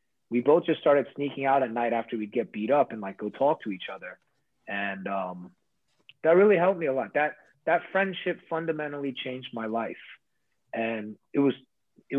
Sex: male